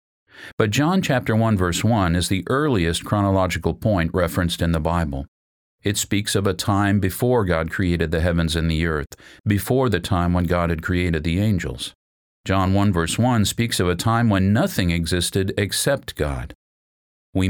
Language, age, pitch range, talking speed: English, 50-69, 85-105 Hz, 175 wpm